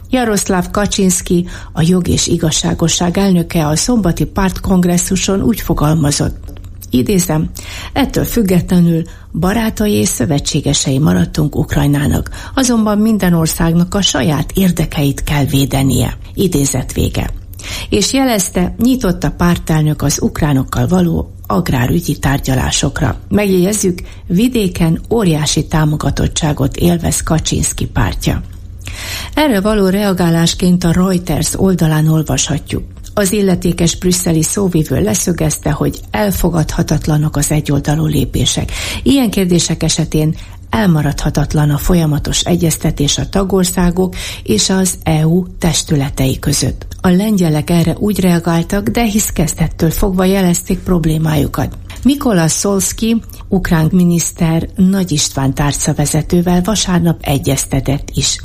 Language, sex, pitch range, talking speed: Hungarian, female, 145-185 Hz, 100 wpm